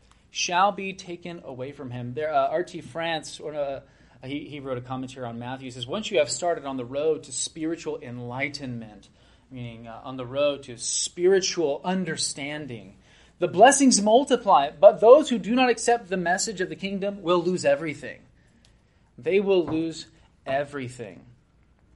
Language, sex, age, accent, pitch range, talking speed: English, male, 30-49, American, 140-195 Hz, 165 wpm